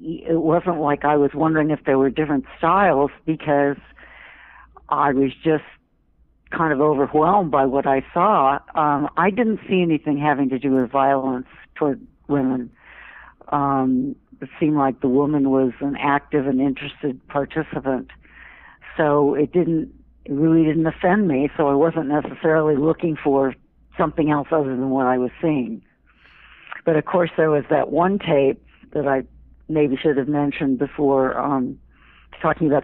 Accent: American